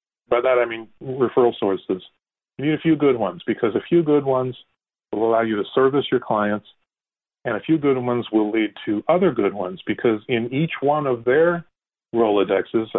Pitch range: 110-145 Hz